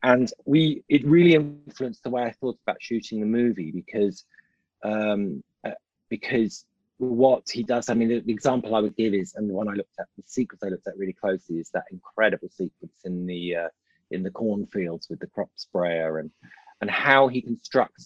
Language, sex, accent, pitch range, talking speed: English, male, British, 95-125 Hz, 205 wpm